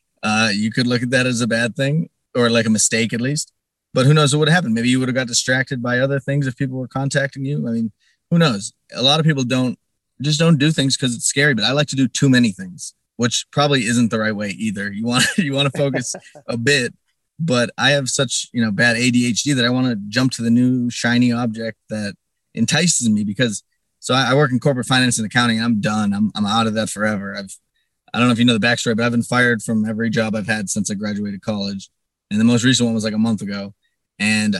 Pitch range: 110-140 Hz